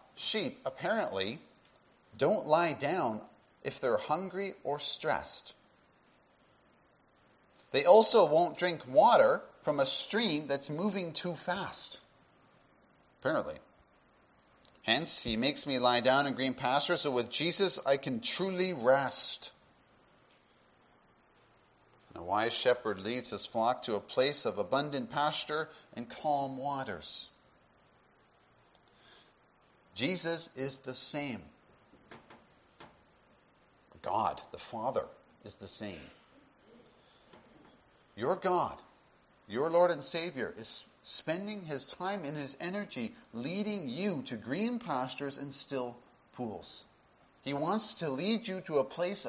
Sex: male